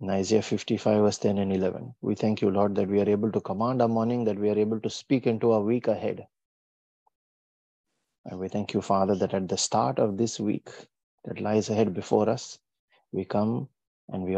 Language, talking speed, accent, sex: English, 210 wpm, Indian, male